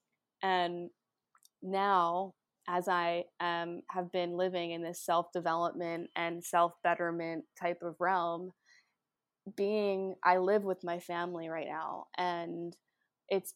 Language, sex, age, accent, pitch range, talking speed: English, female, 20-39, American, 170-185 Hz, 115 wpm